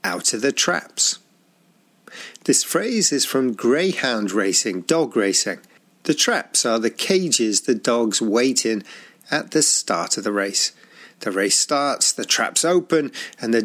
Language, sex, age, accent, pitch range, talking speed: English, male, 40-59, British, 115-165 Hz, 155 wpm